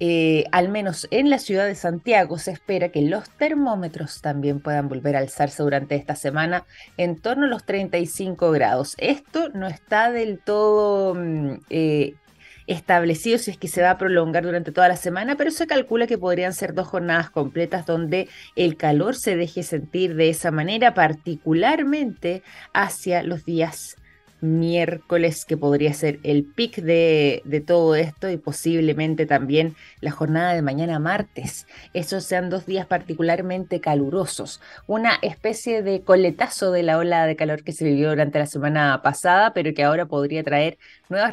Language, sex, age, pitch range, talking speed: Spanish, female, 20-39, 155-200 Hz, 165 wpm